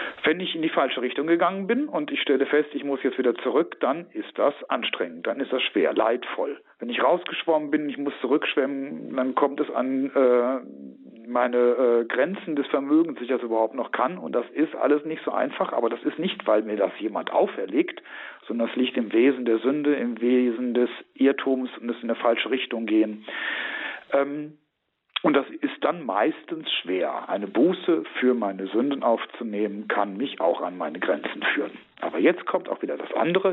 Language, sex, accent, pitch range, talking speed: German, male, German, 120-170 Hz, 195 wpm